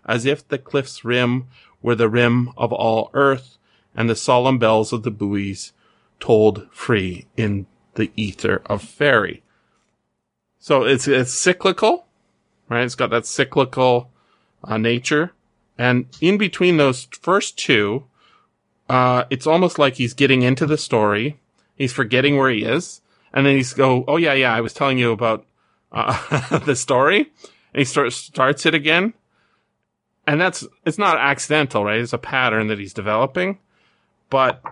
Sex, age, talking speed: male, 30-49, 155 wpm